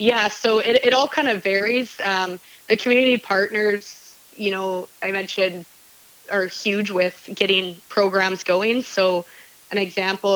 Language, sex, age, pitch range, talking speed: English, female, 20-39, 180-205 Hz, 145 wpm